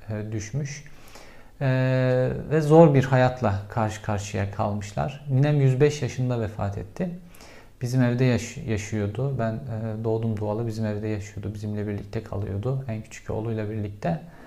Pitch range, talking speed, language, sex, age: 110-130 Hz, 135 wpm, Turkish, male, 50-69